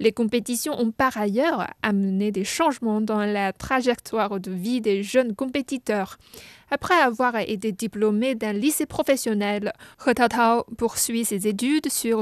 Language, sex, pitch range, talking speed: French, female, 205-255 Hz, 140 wpm